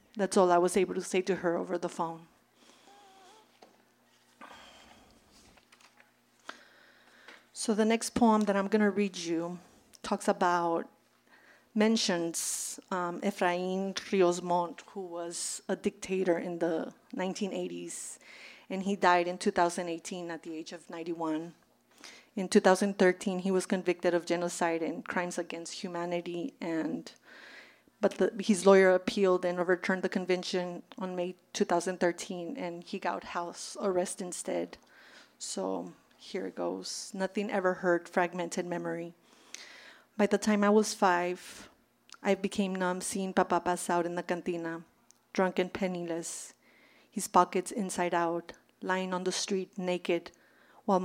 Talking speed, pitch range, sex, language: 135 wpm, 175-195 Hz, female, English